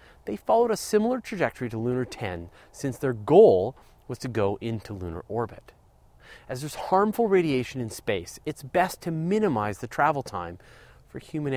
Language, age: English, 30-49